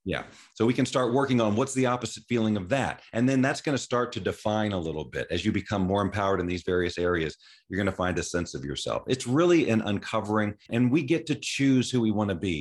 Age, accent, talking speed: 40-59, American, 260 wpm